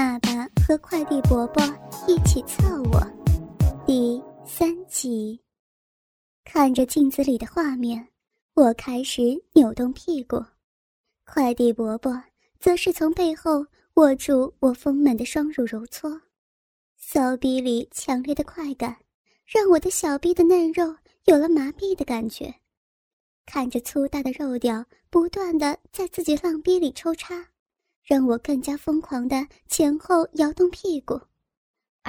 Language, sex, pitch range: Chinese, male, 260-335 Hz